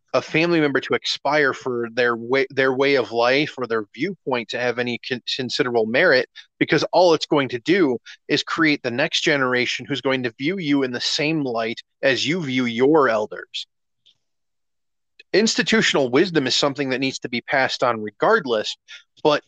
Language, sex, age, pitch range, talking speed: English, male, 30-49, 130-180 Hz, 175 wpm